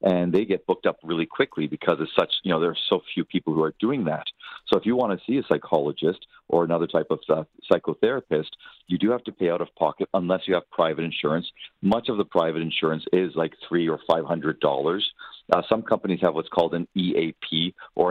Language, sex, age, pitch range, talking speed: English, male, 50-69, 85-100 Hz, 230 wpm